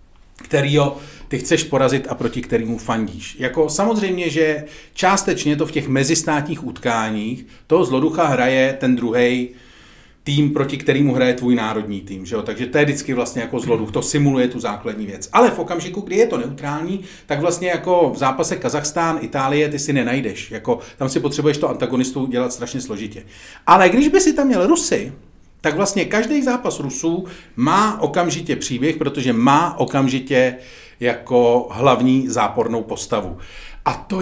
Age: 40-59